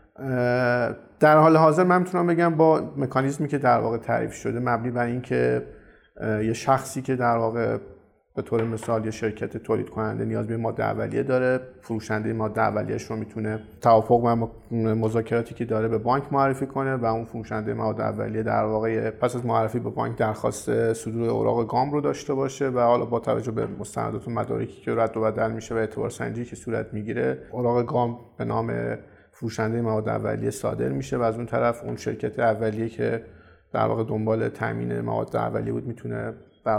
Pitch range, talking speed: 110-130 Hz, 180 wpm